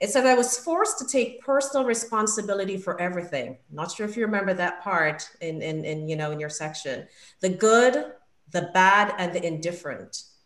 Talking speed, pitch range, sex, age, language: 180 wpm, 170-225 Hz, female, 40-59, English